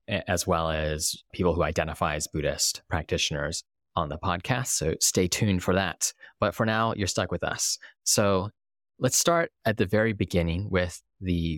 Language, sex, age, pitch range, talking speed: English, male, 20-39, 85-100 Hz, 170 wpm